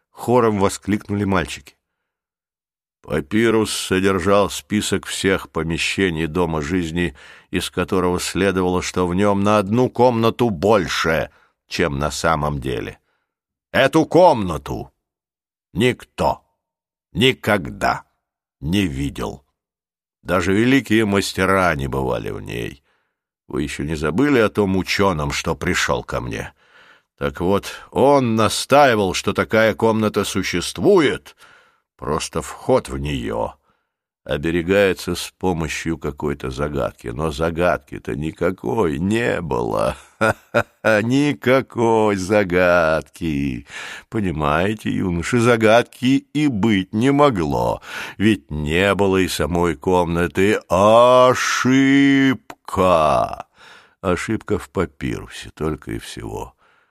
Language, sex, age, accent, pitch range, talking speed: Russian, male, 60-79, native, 80-110 Hz, 95 wpm